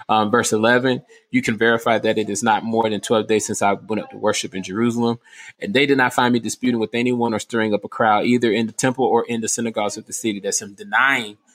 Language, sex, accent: English, male, American